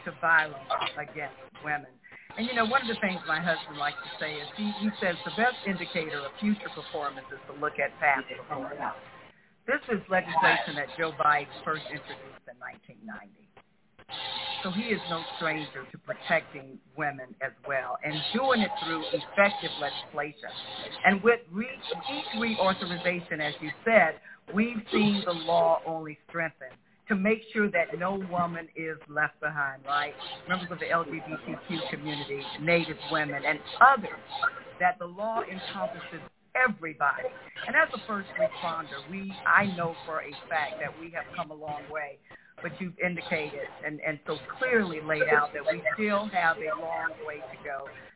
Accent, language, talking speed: American, English, 165 wpm